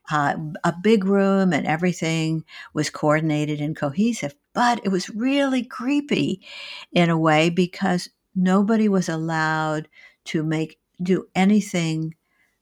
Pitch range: 155-190 Hz